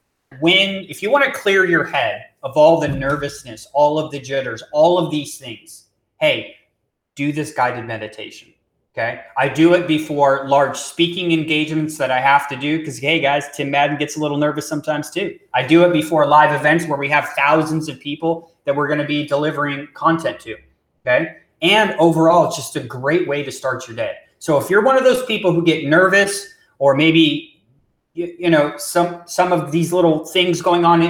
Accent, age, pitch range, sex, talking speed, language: American, 30-49, 140-170 Hz, male, 200 wpm, English